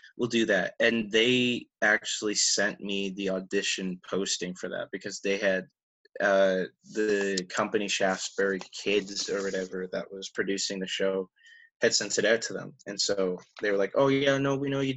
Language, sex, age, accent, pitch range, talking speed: English, male, 20-39, American, 95-120 Hz, 180 wpm